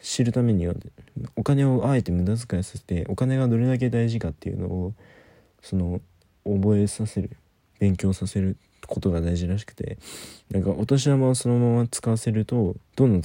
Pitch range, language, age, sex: 90-115 Hz, Japanese, 20-39, male